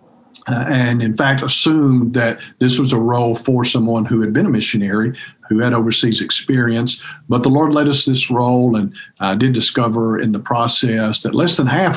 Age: 50-69